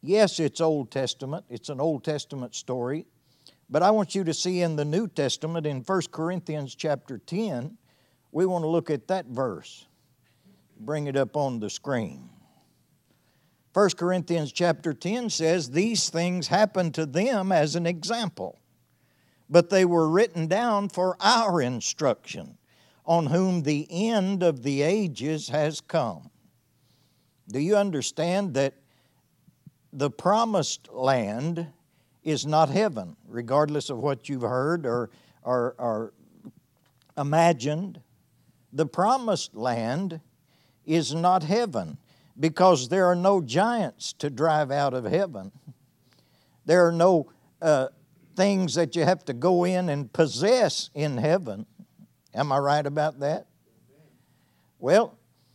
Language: English